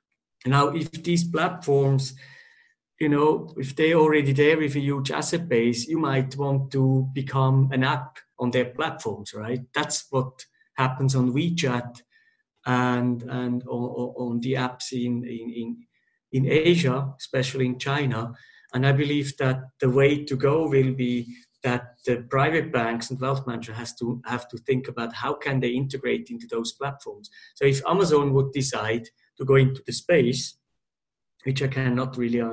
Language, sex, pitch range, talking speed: English, male, 120-140 Hz, 165 wpm